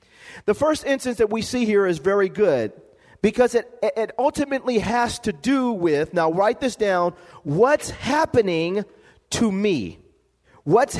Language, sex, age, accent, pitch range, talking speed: English, male, 40-59, American, 210-260 Hz, 145 wpm